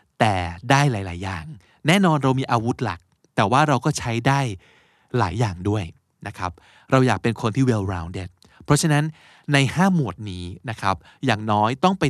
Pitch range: 105-150 Hz